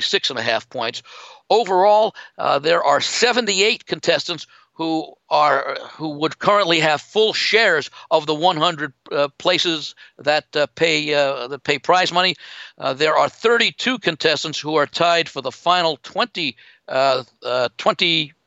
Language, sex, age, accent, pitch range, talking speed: English, male, 60-79, American, 145-180 Hz, 155 wpm